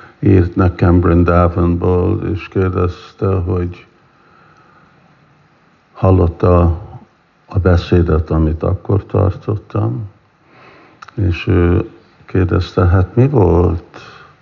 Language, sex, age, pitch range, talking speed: Hungarian, male, 60-79, 85-100 Hz, 80 wpm